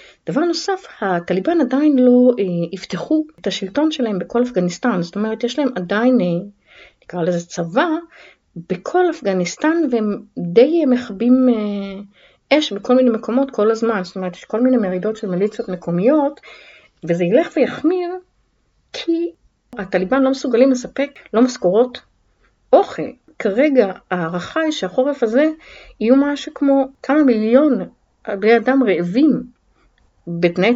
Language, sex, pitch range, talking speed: Hebrew, female, 190-280 Hz, 130 wpm